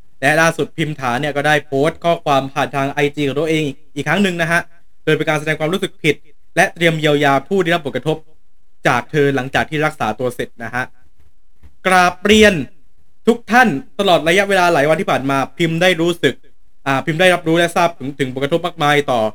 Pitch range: 140-180 Hz